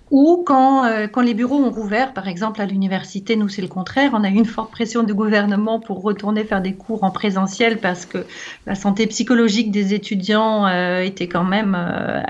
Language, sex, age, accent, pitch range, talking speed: French, female, 40-59, French, 190-230 Hz, 210 wpm